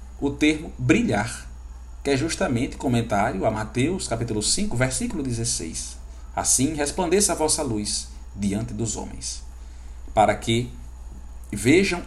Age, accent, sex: 50-69, Brazilian, male